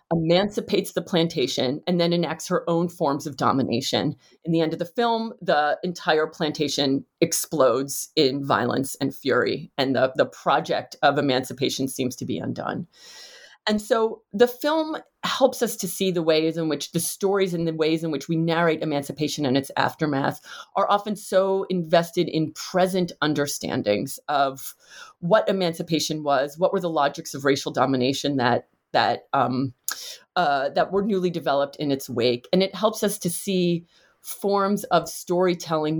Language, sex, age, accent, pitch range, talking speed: English, female, 30-49, American, 145-190 Hz, 165 wpm